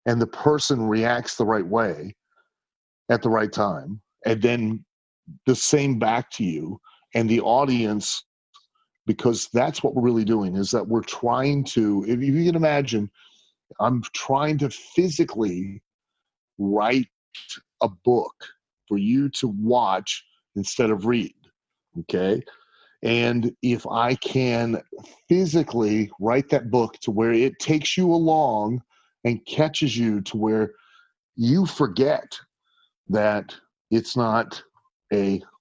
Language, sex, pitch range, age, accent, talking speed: English, male, 110-145 Hz, 40-59, American, 130 wpm